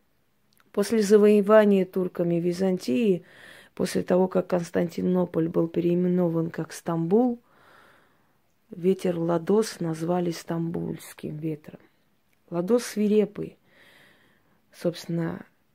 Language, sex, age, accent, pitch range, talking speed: Russian, female, 20-39, native, 170-200 Hz, 80 wpm